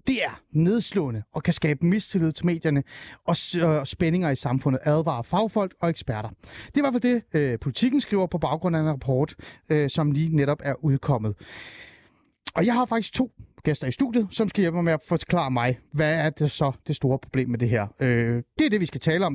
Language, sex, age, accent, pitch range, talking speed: Danish, male, 30-49, native, 140-195 Hz, 210 wpm